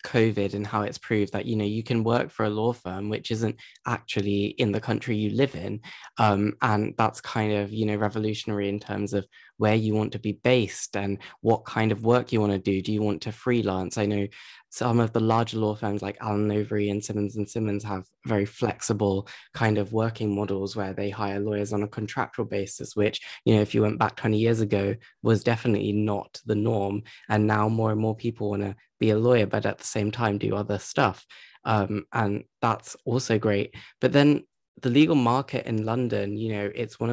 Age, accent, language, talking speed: 10-29, British, English, 220 wpm